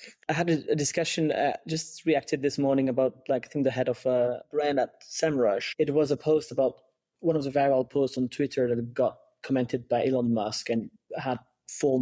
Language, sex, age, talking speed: English, male, 20-39, 205 wpm